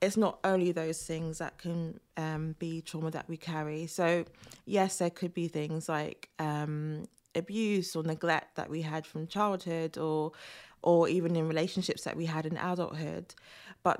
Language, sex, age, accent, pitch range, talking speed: English, female, 20-39, British, 160-185 Hz, 170 wpm